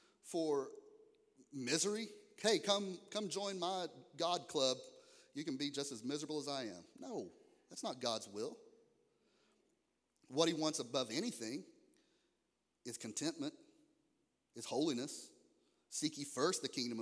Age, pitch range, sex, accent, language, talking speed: 30-49, 125-215 Hz, male, American, English, 130 wpm